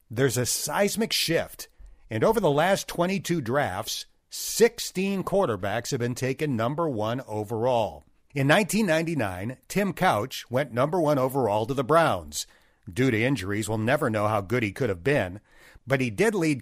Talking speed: 165 wpm